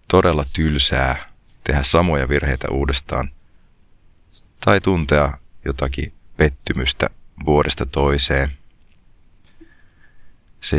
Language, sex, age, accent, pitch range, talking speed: Finnish, male, 30-49, native, 70-85 Hz, 70 wpm